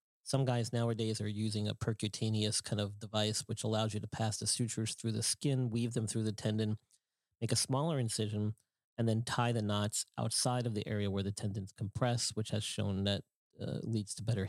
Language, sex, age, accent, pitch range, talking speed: English, male, 40-59, American, 105-120 Hz, 205 wpm